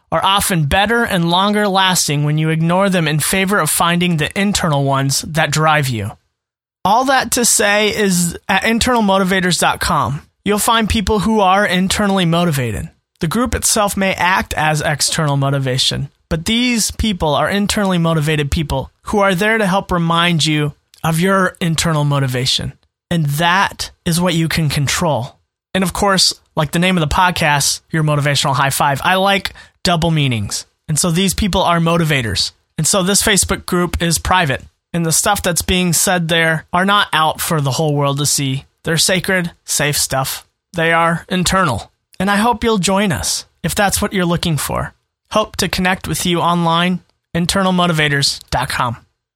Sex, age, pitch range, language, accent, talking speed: male, 30-49, 150-195 Hz, English, American, 170 wpm